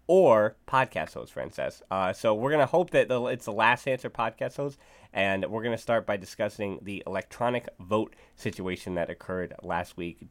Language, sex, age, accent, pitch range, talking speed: English, male, 30-49, American, 95-115 Hz, 190 wpm